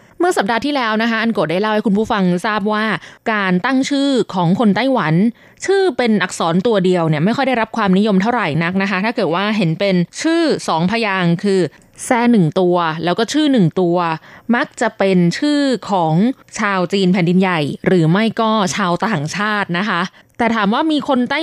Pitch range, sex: 180-240 Hz, female